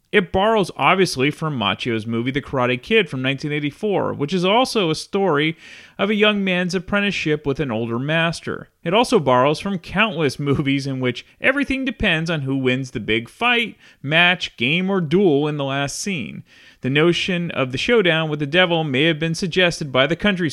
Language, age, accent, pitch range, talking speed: English, 30-49, American, 135-200 Hz, 185 wpm